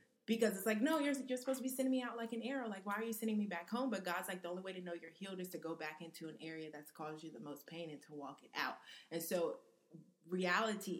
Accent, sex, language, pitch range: American, female, English, 155-185 Hz